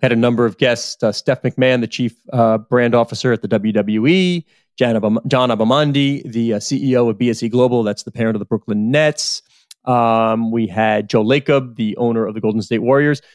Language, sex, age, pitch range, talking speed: English, male, 30-49, 120-160 Hz, 200 wpm